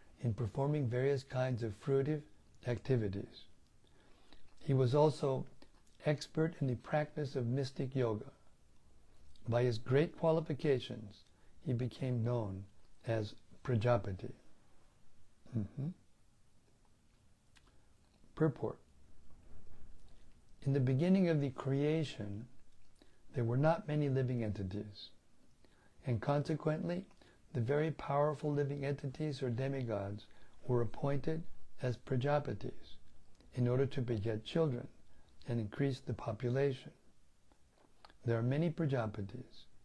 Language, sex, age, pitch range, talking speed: English, male, 60-79, 105-140 Hz, 100 wpm